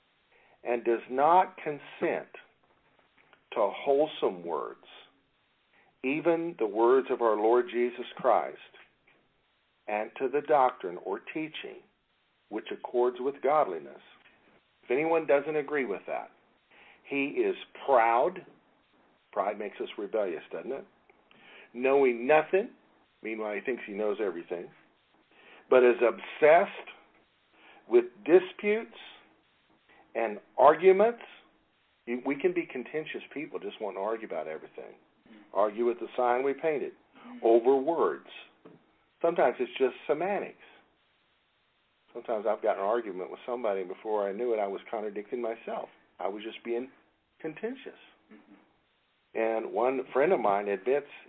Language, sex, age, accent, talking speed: English, male, 50-69, American, 125 wpm